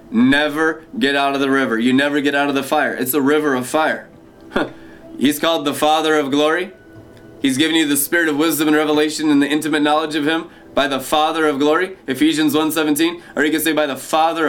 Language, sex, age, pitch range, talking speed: English, male, 20-39, 150-190 Hz, 220 wpm